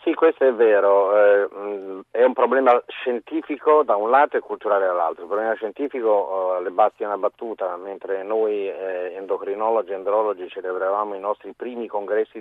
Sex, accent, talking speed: male, native, 150 wpm